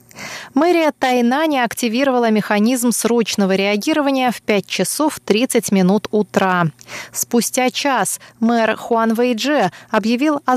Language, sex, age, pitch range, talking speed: Russian, female, 20-39, 195-245 Hz, 115 wpm